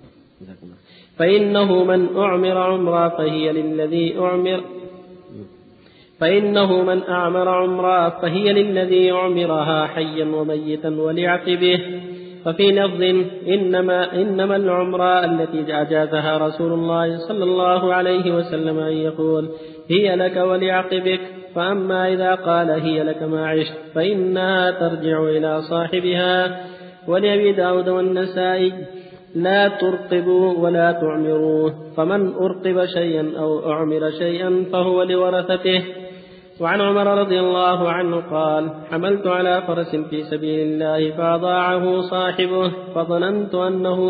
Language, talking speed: Arabic, 100 wpm